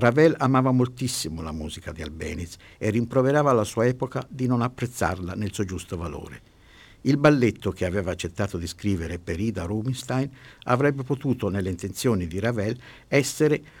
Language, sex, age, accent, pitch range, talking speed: Italian, male, 50-69, native, 95-130 Hz, 155 wpm